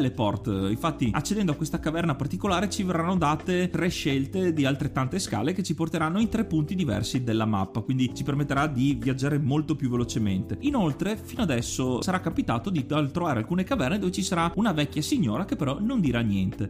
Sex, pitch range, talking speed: male, 120-175 Hz, 190 wpm